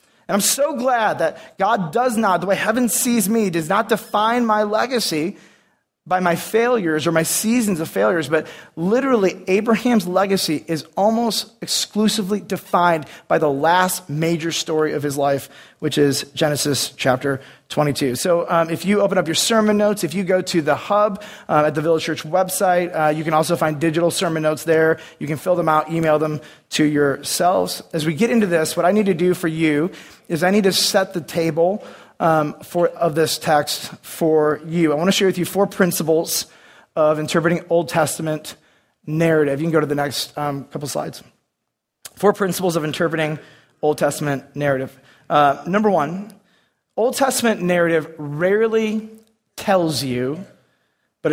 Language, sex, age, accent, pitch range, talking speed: English, male, 30-49, American, 155-205 Hz, 175 wpm